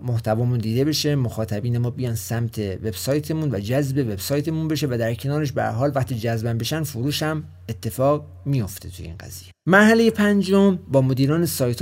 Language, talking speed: Persian, 160 wpm